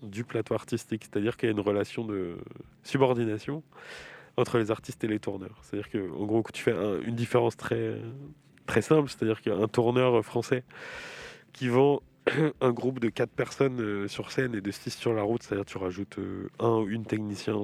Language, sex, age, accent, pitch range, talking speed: French, male, 20-39, French, 100-120 Hz, 185 wpm